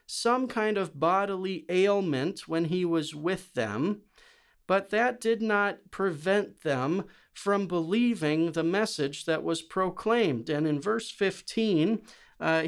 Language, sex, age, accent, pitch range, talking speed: English, male, 40-59, American, 155-205 Hz, 135 wpm